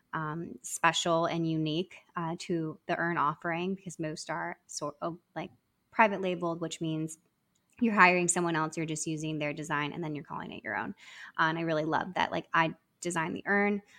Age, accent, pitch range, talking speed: 20-39, American, 160-185 Hz, 195 wpm